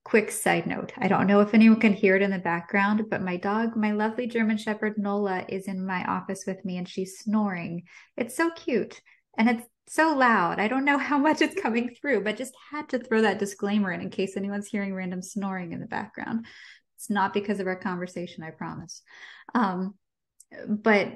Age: 20-39